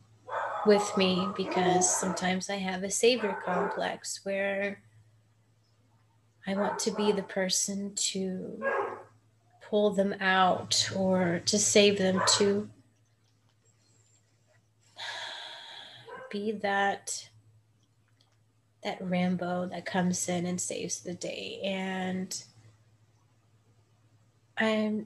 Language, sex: English, female